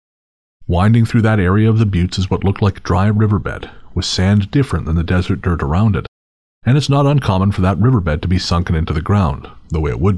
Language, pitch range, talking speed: English, 85-115 Hz, 235 wpm